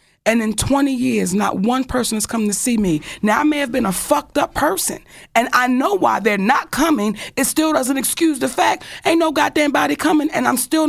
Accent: American